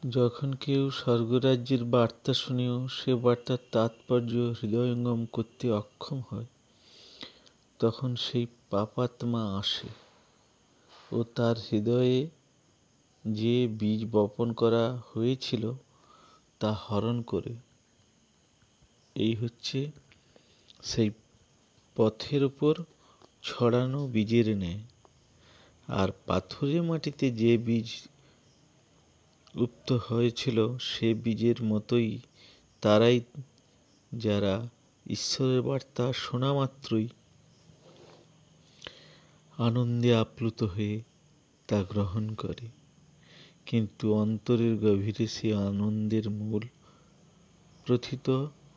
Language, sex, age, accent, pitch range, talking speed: Bengali, male, 50-69, native, 110-130 Hz, 70 wpm